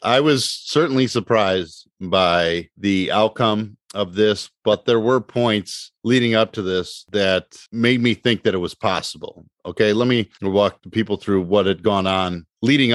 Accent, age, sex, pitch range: American, 40-59, male, 95-120 Hz